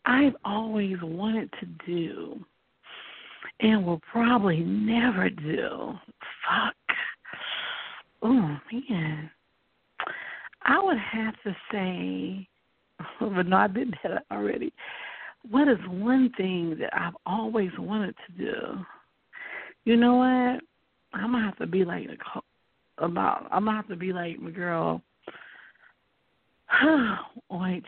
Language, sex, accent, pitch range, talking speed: English, female, American, 175-235 Hz, 120 wpm